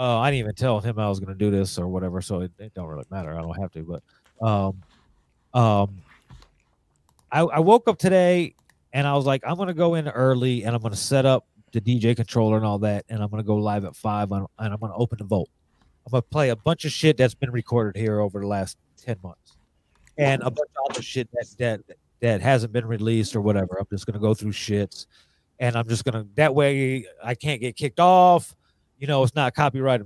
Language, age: English, 30-49